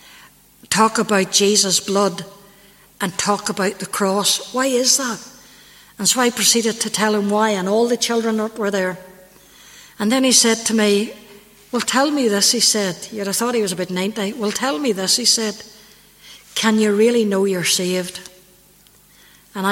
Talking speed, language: 175 wpm, English